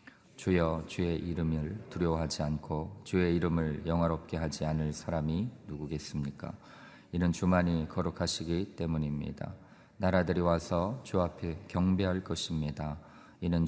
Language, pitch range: Korean, 85-105 Hz